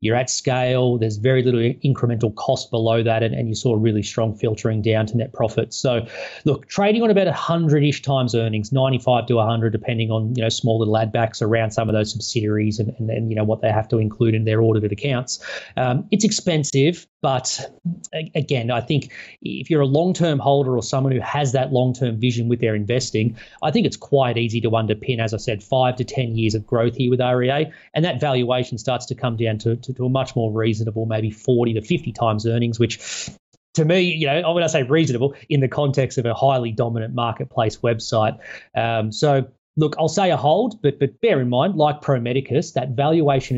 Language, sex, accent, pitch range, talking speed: English, male, Australian, 115-140 Hz, 215 wpm